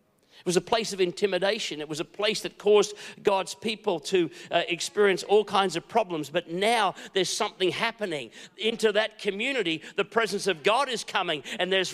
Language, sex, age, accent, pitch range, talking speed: English, male, 50-69, Australian, 195-245 Hz, 185 wpm